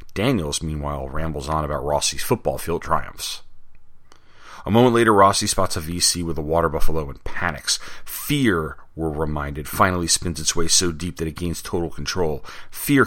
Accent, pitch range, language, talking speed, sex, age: American, 75-90 Hz, English, 170 wpm, male, 40-59